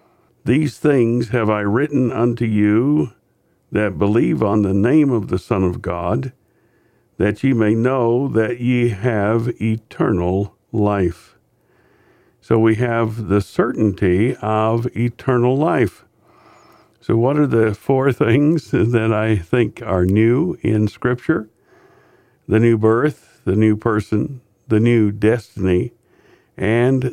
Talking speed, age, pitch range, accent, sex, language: 125 wpm, 60-79, 105-120 Hz, American, male, English